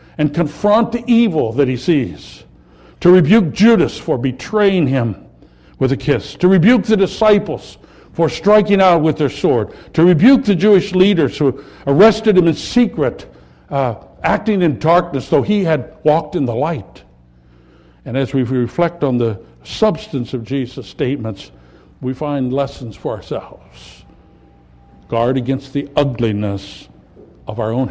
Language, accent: English, American